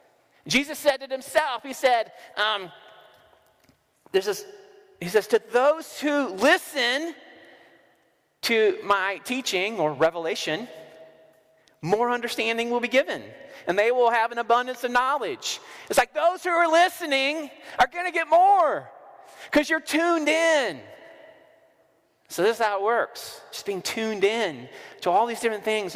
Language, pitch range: English, 190-295 Hz